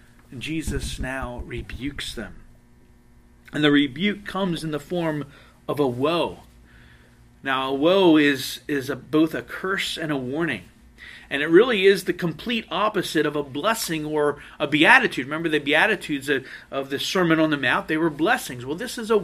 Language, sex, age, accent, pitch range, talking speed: English, male, 40-59, American, 120-195 Hz, 175 wpm